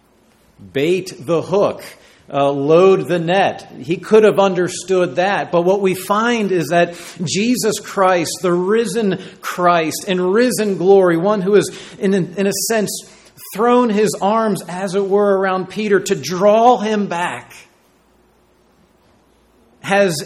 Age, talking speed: 40-59, 135 wpm